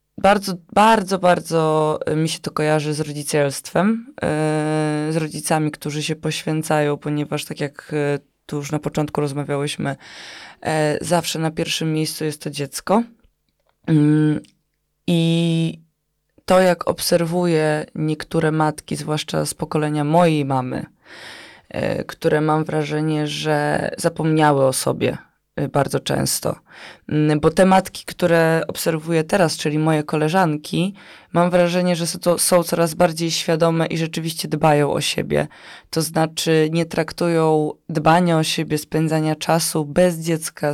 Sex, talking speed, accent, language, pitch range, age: female, 120 wpm, native, Polish, 150-165 Hz, 20-39